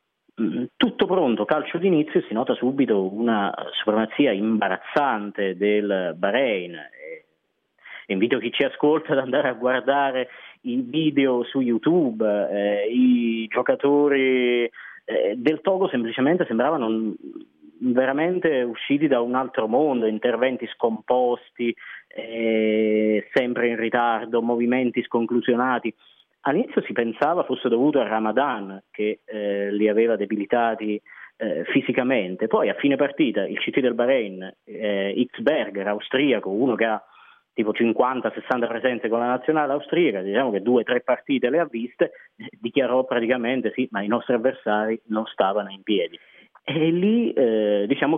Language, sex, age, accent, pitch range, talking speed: Italian, male, 30-49, native, 110-130 Hz, 130 wpm